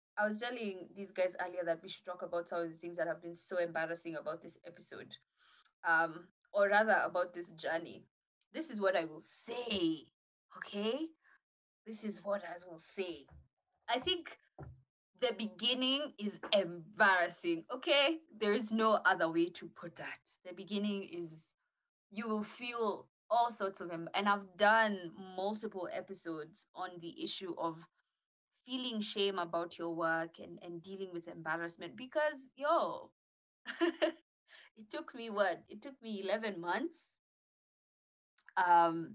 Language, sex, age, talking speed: English, female, 20-39, 150 wpm